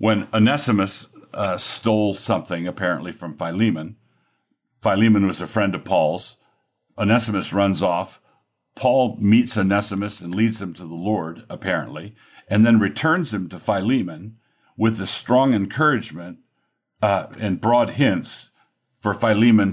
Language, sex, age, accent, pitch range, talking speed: English, male, 50-69, American, 95-115 Hz, 130 wpm